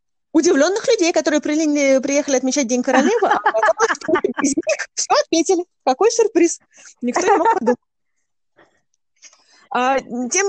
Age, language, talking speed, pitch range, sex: 20-39, Russian, 115 wpm, 185-255 Hz, female